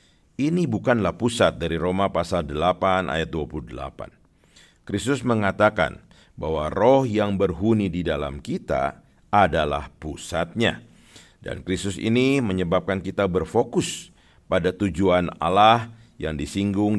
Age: 50-69